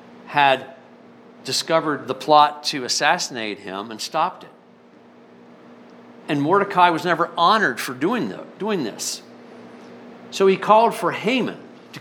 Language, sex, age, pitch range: English, male, 50-69, 185-255 Hz